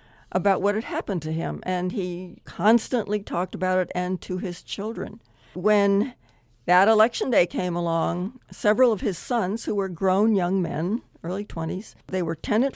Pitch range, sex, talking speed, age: 170-210 Hz, female, 170 wpm, 60-79